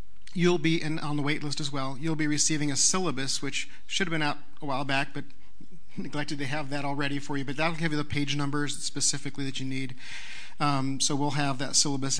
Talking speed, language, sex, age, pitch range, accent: 230 wpm, English, male, 50-69, 135-155 Hz, American